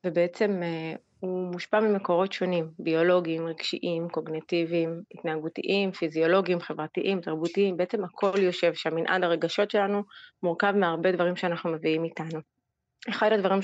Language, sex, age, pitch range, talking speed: Hebrew, female, 30-49, 165-185 Hz, 120 wpm